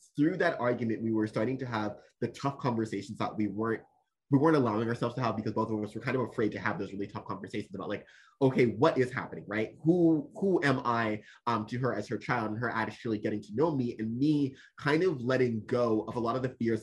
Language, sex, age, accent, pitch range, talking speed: English, male, 20-39, American, 110-135 Hz, 250 wpm